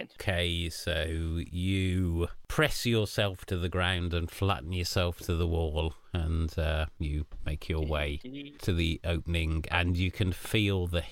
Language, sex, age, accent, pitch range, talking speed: English, male, 40-59, British, 80-90 Hz, 150 wpm